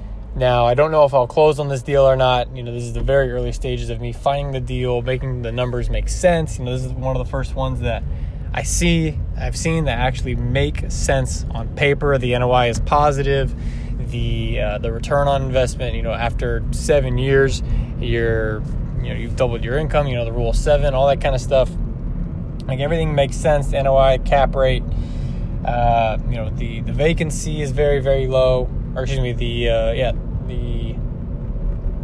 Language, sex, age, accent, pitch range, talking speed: English, male, 20-39, American, 120-140 Hz, 200 wpm